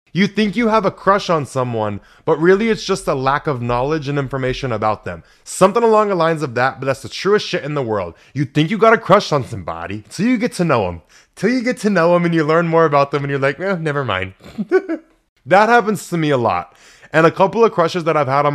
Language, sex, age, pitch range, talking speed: English, male, 20-39, 130-185 Hz, 260 wpm